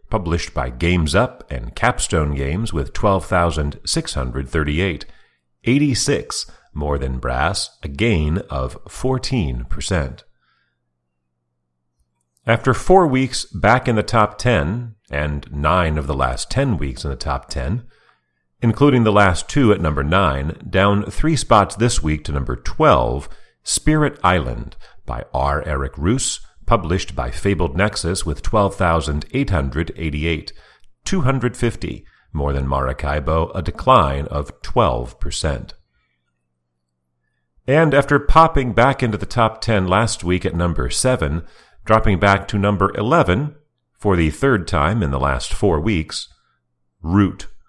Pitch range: 70-110 Hz